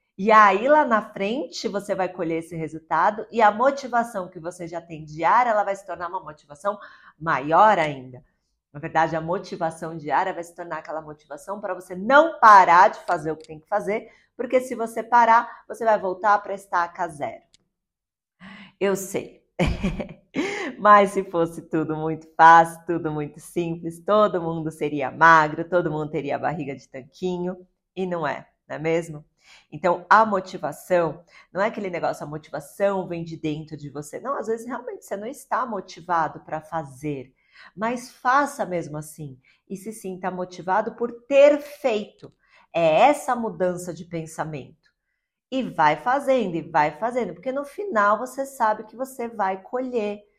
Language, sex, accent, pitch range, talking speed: Portuguese, female, Brazilian, 165-225 Hz, 170 wpm